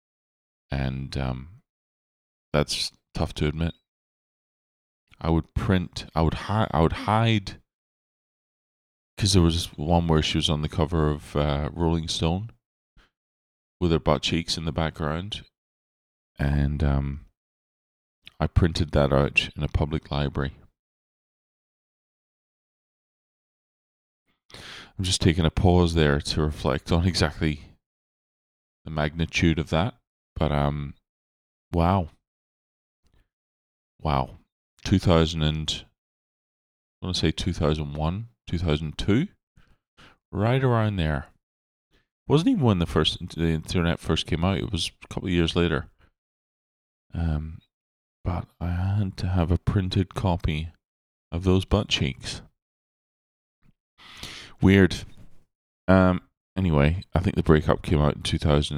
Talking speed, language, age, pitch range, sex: 120 wpm, English, 20-39, 70-90 Hz, male